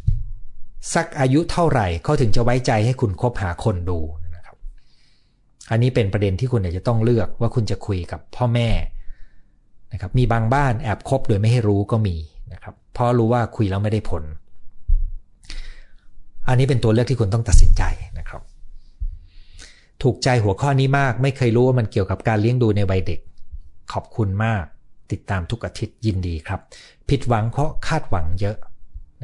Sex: male